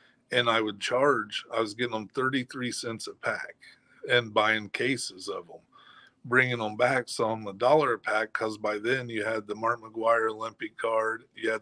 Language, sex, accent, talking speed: English, male, American, 195 wpm